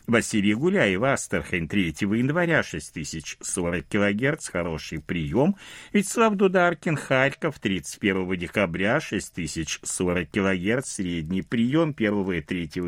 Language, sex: Russian, male